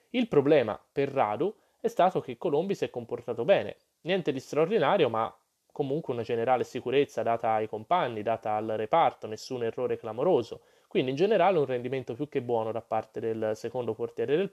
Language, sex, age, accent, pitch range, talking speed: Italian, male, 20-39, native, 115-160 Hz, 180 wpm